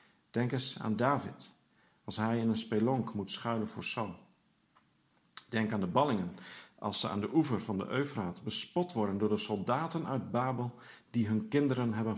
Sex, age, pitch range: male, 50-69, 110-145 Hz